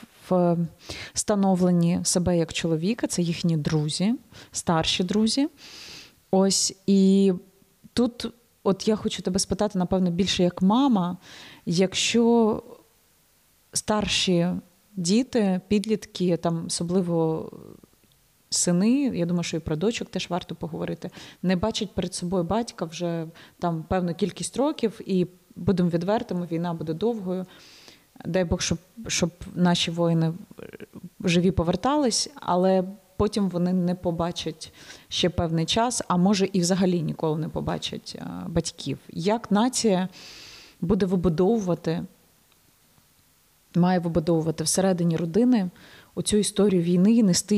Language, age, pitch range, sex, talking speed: Ukrainian, 30-49, 170-210 Hz, female, 115 wpm